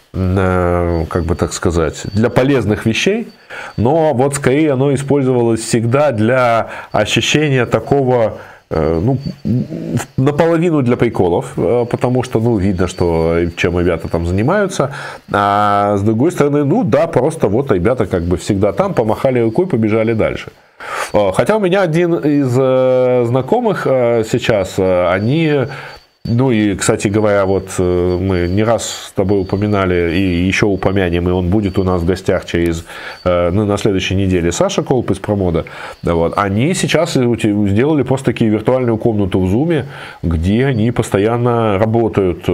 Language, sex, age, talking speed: Russian, male, 20-39, 135 wpm